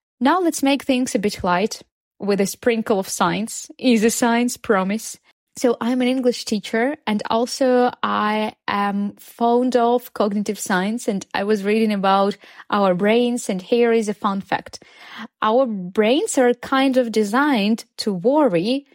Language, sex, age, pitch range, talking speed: Ukrainian, female, 20-39, 205-255 Hz, 155 wpm